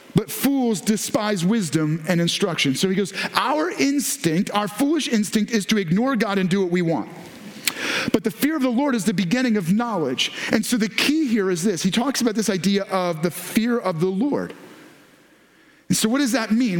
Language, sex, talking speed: English, male, 205 wpm